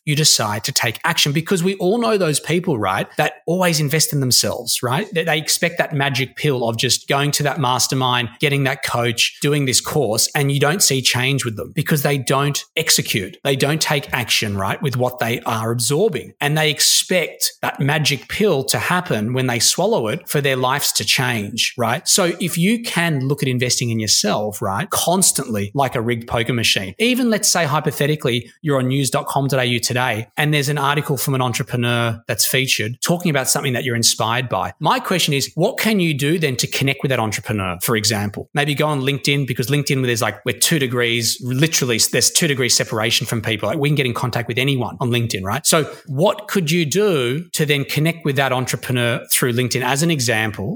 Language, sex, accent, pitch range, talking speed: English, male, Australian, 120-155 Hz, 210 wpm